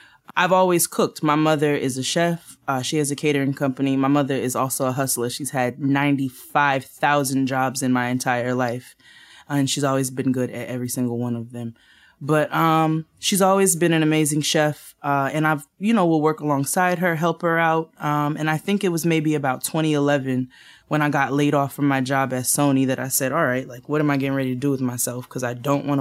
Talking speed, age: 225 wpm, 20-39